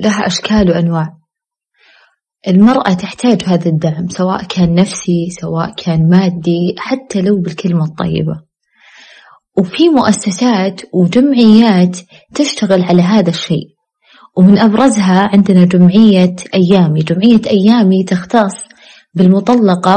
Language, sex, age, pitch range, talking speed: Arabic, female, 20-39, 180-220 Hz, 100 wpm